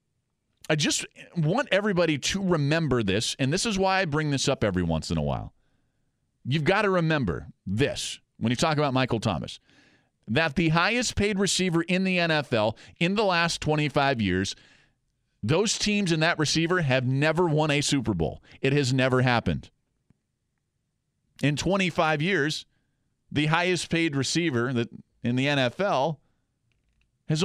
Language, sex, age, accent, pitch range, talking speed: English, male, 40-59, American, 125-165 Hz, 150 wpm